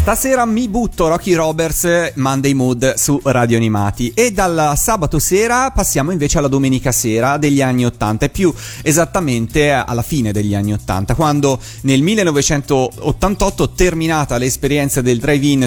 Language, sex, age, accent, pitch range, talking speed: Italian, male, 30-49, native, 120-165 Hz, 140 wpm